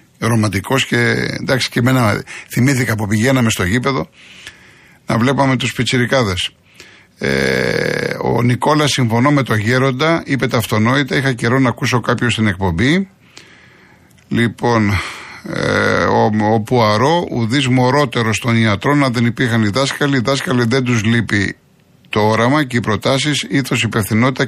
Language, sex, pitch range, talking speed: Greek, male, 110-135 Hz, 135 wpm